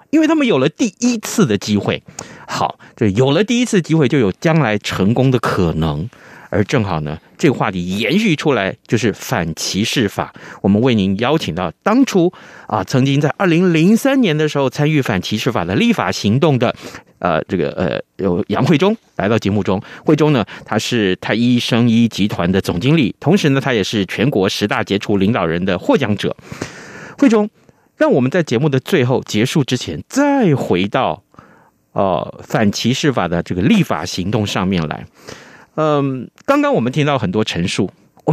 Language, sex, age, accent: Chinese, male, 30-49, native